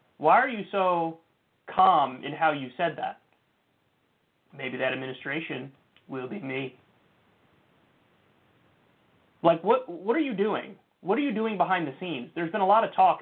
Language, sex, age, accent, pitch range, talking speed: English, male, 30-49, American, 135-165 Hz, 160 wpm